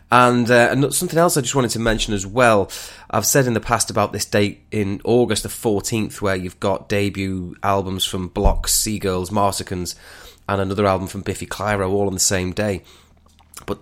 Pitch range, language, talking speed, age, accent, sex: 90-105 Hz, English, 195 wpm, 20-39, British, male